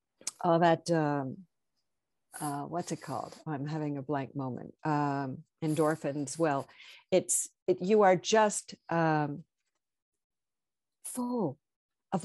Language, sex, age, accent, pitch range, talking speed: English, female, 50-69, American, 160-215 Hz, 115 wpm